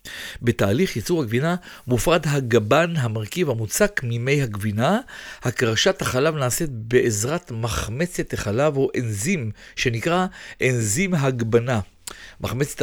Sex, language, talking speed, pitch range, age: male, Hebrew, 100 wpm, 115-170 Hz, 50-69